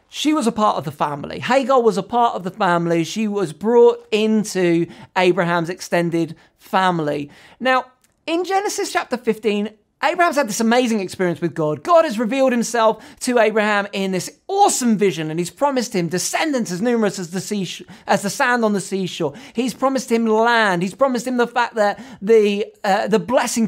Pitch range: 190-265 Hz